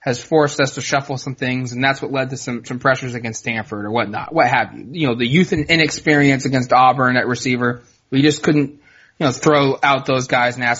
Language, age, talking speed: English, 20-39, 240 wpm